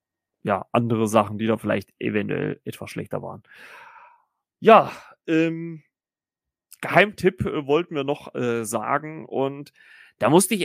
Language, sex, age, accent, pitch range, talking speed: German, male, 30-49, German, 120-150 Hz, 125 wpm